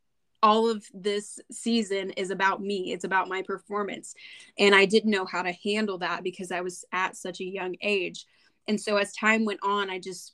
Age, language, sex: 10-29, English, female